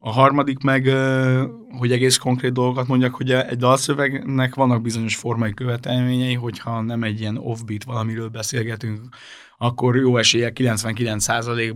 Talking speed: 135 wpm